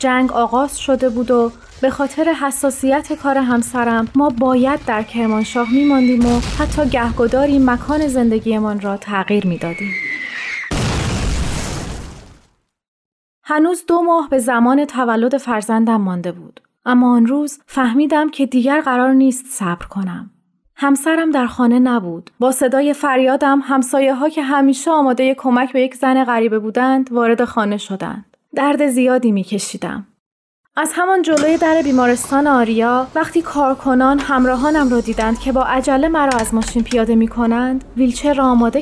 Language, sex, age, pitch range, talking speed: Persian, female, 30-49, 235-280 Hz, 140 wpm